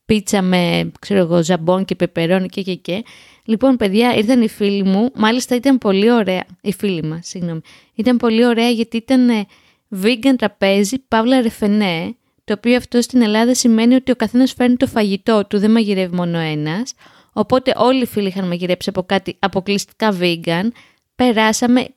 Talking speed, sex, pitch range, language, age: 160 wpm, female, 195-245 Hz, Greek, 20-39